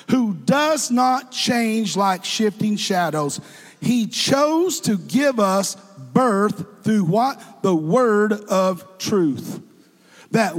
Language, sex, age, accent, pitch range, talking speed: English, male, 50-69, American, 180-235 Hz, 115 wpm